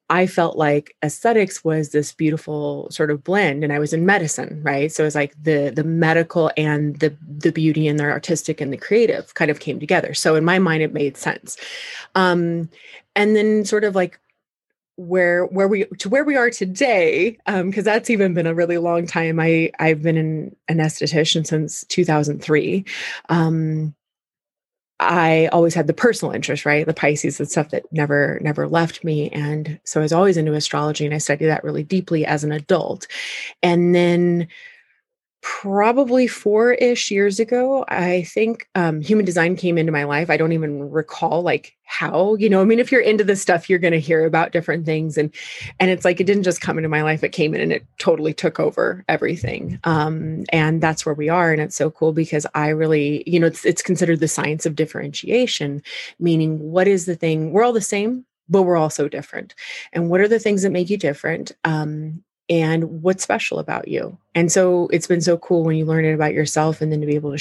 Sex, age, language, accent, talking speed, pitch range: female, 20-39, English, American, 210 wpm, 155-190 Hz